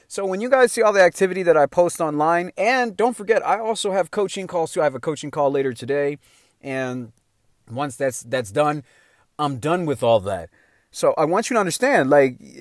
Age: 30-49